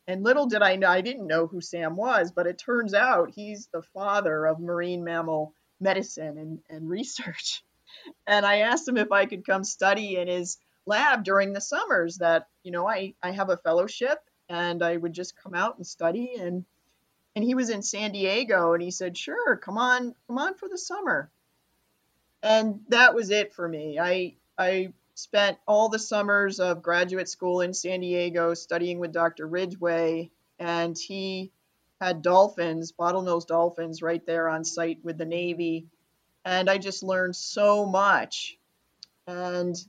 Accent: American